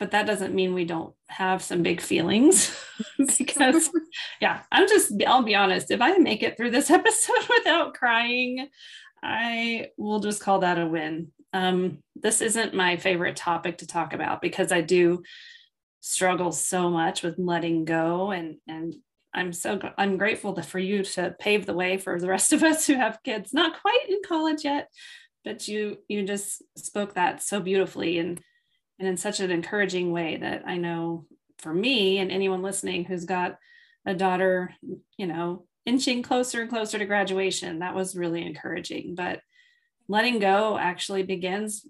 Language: English